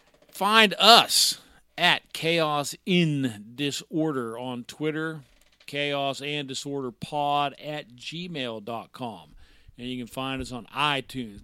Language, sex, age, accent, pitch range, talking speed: English, male, 50-69, American, 125-175 Hz, 95 wpm